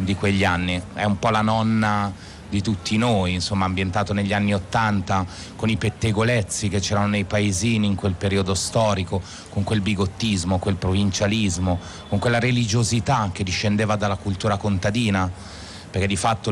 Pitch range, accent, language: 95-110 Hz, native, Italian